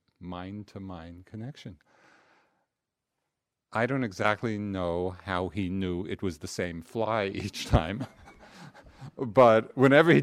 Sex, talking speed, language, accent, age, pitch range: male, 110 wpm, English, American, 50-69, 90-115 Hz